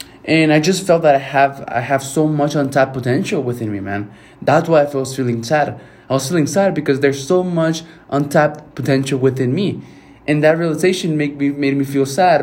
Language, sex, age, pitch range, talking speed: English, male, 20-39, 115-140 Hz, 205 wpm